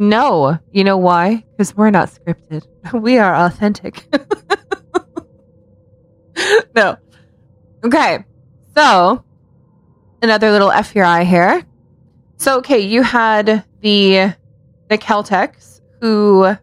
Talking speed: 100 wpm